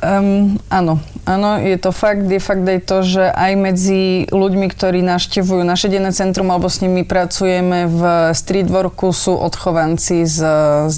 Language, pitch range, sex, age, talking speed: Slovak, 170-195 Hz, female, 20-39, 140 wpm